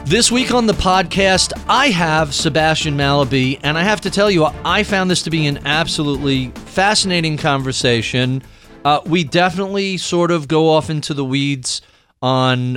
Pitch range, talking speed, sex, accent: 125-155 Hz, 165 wpm, male, American